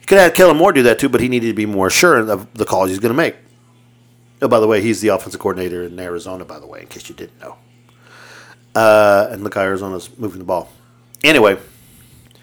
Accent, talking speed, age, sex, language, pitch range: American, 235 wpm, 40-59, male, English, 110-145 Hz